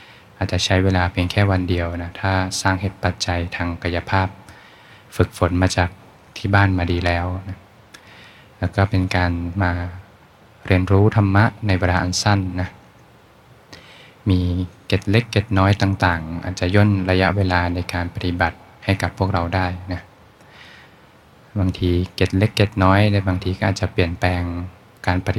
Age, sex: 20-39, male